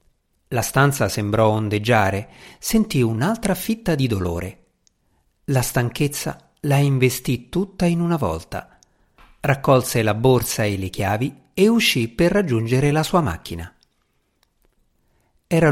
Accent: native